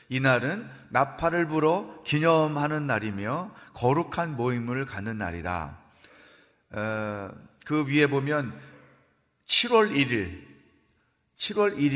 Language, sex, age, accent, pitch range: Korean, male, 40-59, native, 105-155 Hz